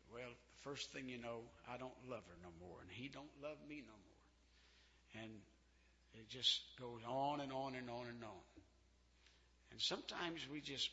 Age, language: 60-79, English